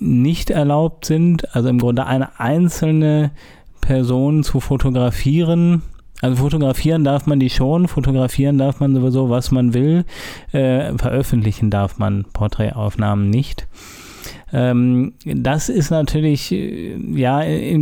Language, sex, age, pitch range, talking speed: German, male, 30-49, 120-140 Hz, 120 wpm